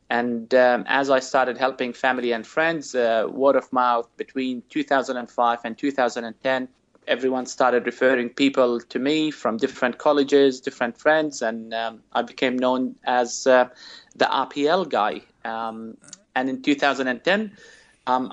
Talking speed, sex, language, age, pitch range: 140 wpm, male, English, 30-49, 120-135 Hz